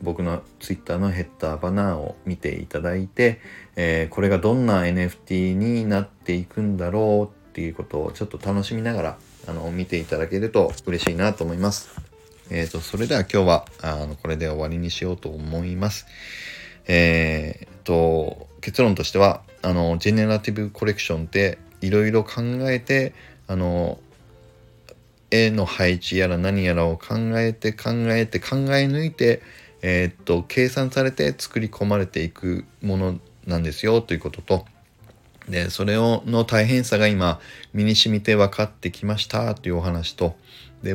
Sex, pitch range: male, 85-110 Hz